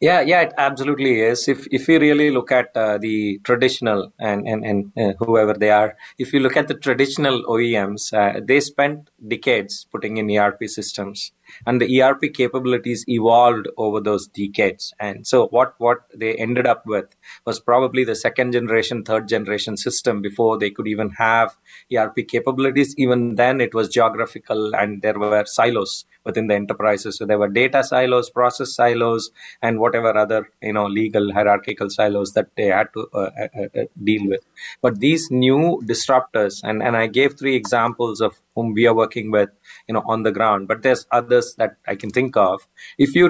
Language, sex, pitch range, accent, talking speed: English, male, 105-130 Hz, Indian, 185 wpm